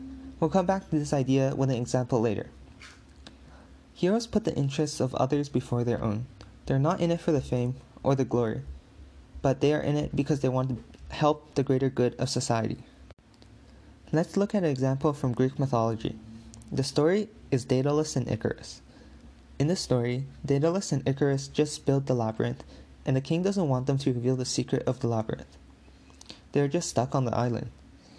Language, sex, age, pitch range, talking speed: English, male, 20-39, 115-150 Hz, 190 wpm